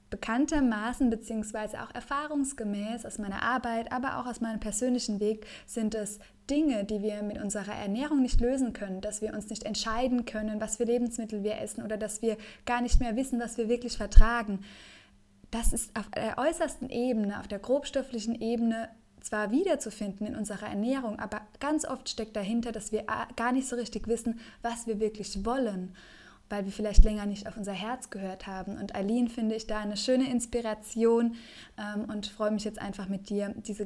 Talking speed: 185 wpm